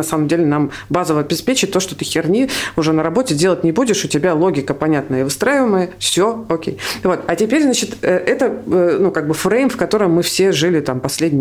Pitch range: 150-185 Hz